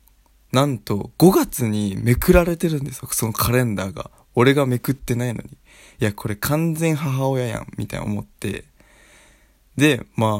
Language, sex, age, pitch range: Japanese, male, 20-39, 105-140 Hz